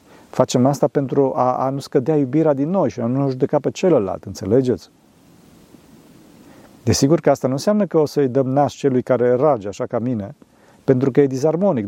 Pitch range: 115-150 Hz